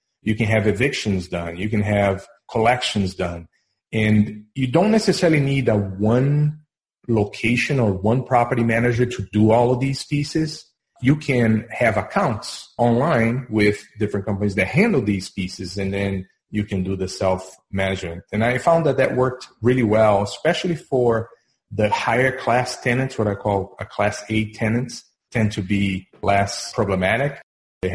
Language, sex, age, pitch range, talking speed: English, male, 30-49, 95-120 Hz, 160 wpm